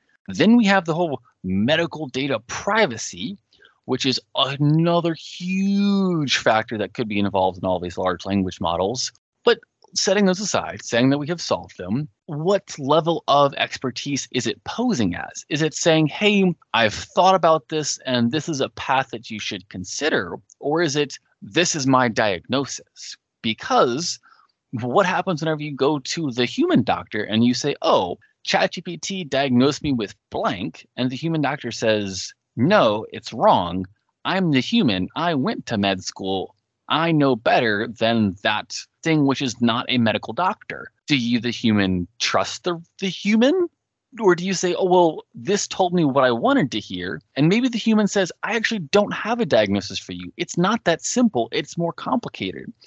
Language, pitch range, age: English, 115-175 Hz, 20-39